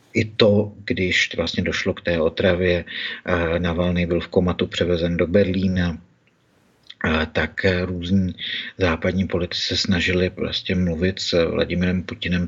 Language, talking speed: Czech, 130 wpm